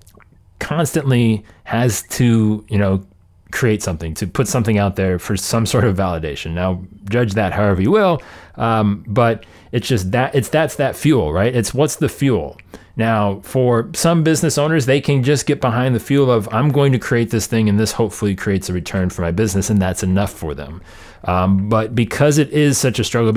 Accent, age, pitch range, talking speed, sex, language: American, 30-49, 95-120 Hz, 200 wpm, male, English